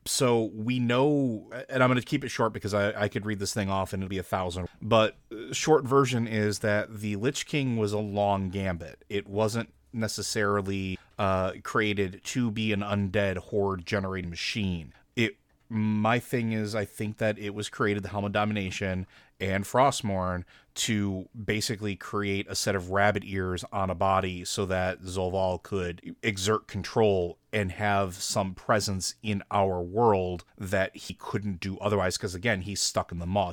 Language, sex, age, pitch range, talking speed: English, male, 30-49, 95-110 Hz, 175 wpm